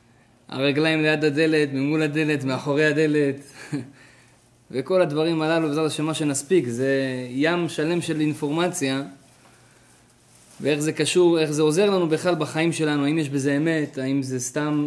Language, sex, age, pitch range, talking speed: Hebrew, male, 20-39, 125-155 Hz, 145 wpm